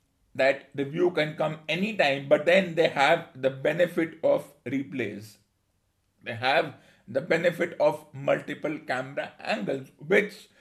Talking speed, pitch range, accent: 130 wpm, 135-165 Hz, Indian